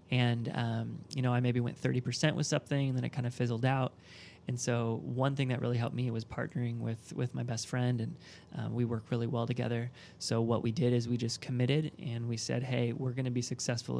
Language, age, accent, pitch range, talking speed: English, 20-39, American, 120-135 Hz, 240 wpm